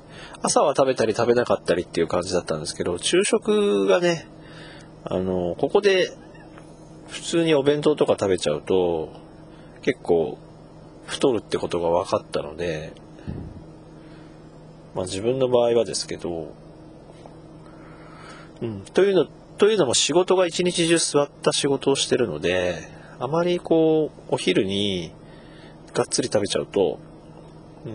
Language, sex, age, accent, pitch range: Japanese, male, 40-59, native, 110-170 Hz